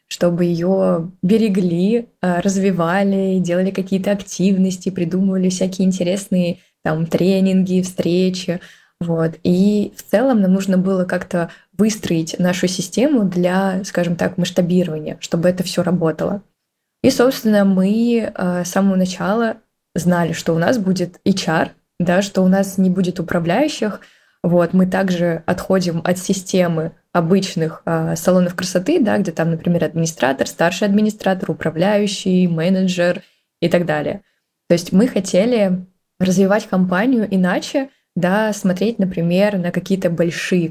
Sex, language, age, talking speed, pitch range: female, Russian, 20-39, 125 wpm, 175-195 Hz